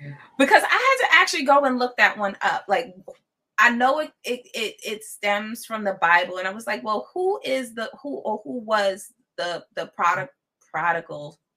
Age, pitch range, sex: 20-39, 170-240 Hz, female